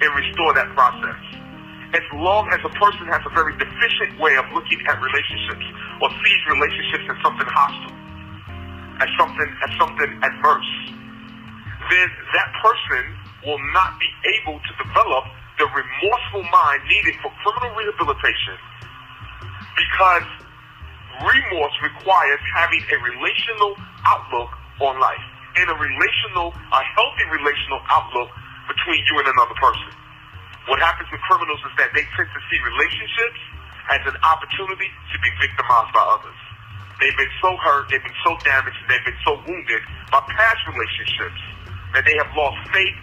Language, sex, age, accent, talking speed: English, male, 40-59, American, 145 wpm